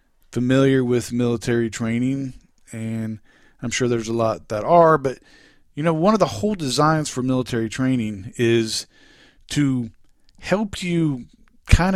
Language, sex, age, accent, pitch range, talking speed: English, male, 40-59, American, 115-140 Hz, 140 wpm